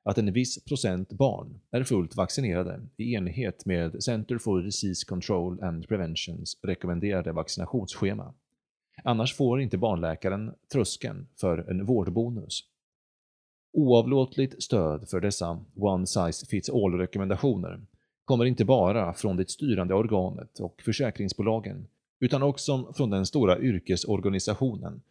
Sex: male